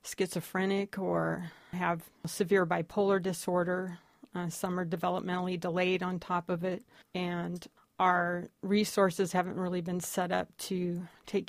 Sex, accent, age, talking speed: female, American, 40-59, 135 wpm